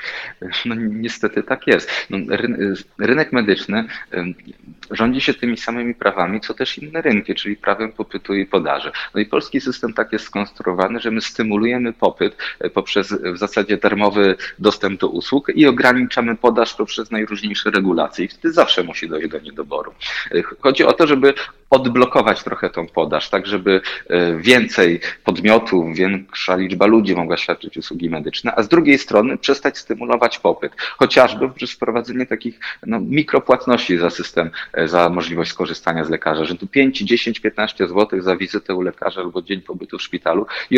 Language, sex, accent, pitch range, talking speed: Polish, male, native, 95-125 Hz, 160 wpm